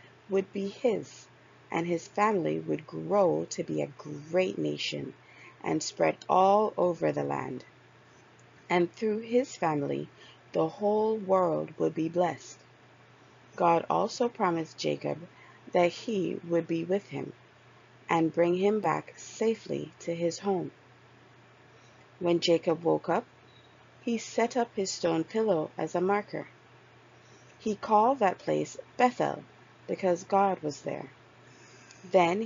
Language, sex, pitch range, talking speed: English, female, 155-200 Hz, 130 wpm